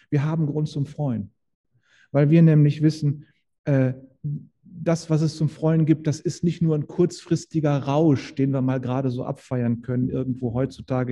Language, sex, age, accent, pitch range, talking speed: German, male, 40-59, German, 125-160 Hz, 175 wpm